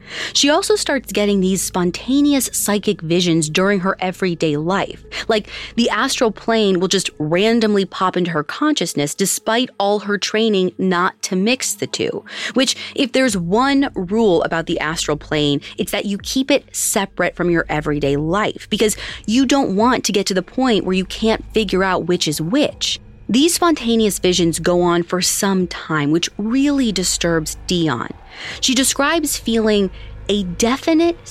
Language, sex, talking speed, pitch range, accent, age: English, female, 165 wpm, 175-230 Hz, American, 30-49